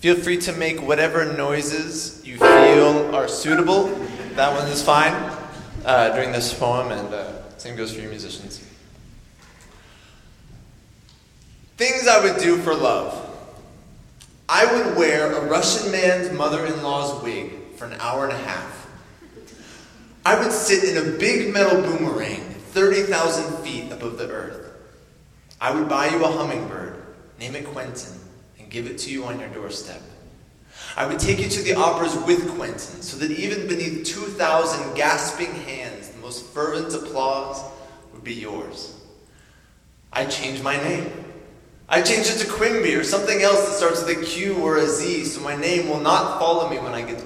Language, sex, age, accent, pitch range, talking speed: English, male, 20-39, American, 135-185 Hz, 160 wpm